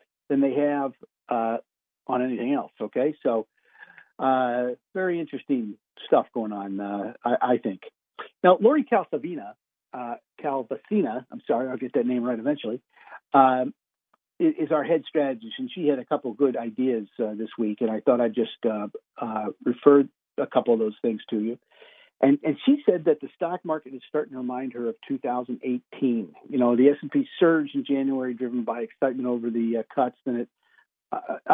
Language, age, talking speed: English, 50-69, 175 wpm